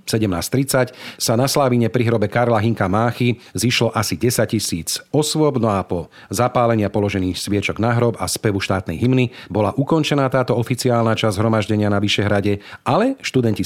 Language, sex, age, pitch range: Slovak, male, 40-59, 105-125 Hz